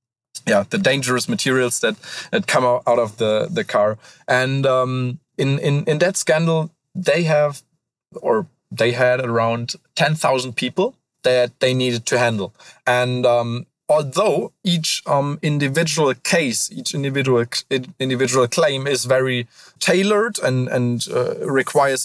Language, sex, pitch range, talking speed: English, male, 120-155 Hz, 140 wpm